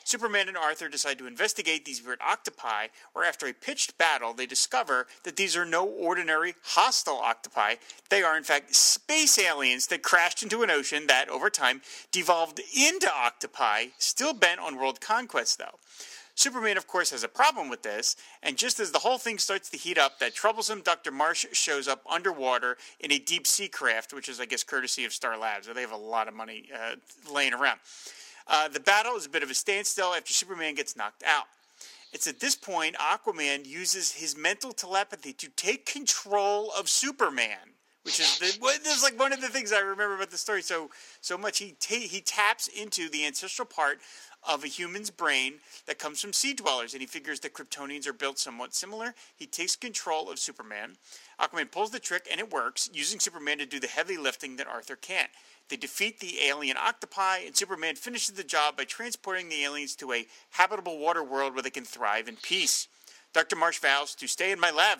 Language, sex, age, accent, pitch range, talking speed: English, male, 30-49, American, 145-230 Hz, 205 wpm